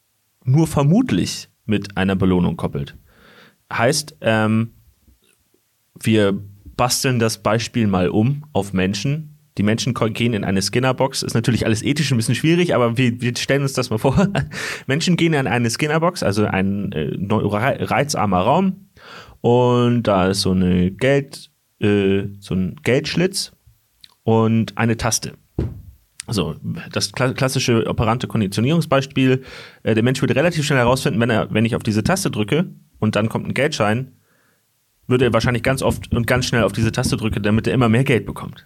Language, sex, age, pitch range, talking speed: German, male, 30-49, 105-135 Hz, 160 wpm